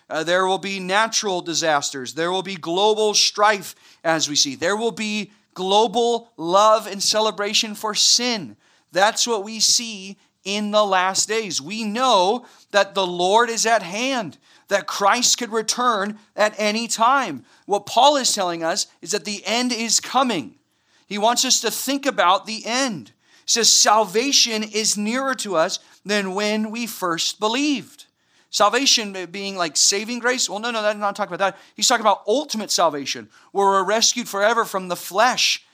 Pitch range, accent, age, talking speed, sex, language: 190-230 Hz, American, 40-59, 170 wpm, male, English